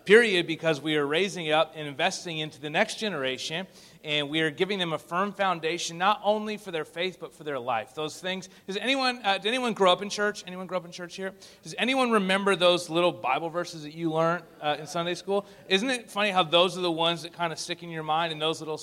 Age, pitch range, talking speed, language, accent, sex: 30-49, 155-200 Hz, 250 wpm, English, American, male